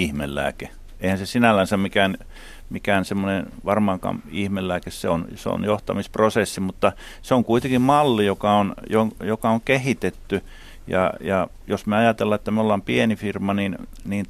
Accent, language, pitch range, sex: native, Finnish, 100-115 Hz, male